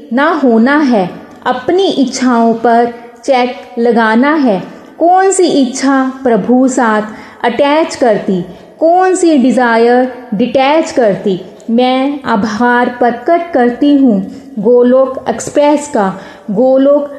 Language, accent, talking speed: Hindi, native, 110 wpm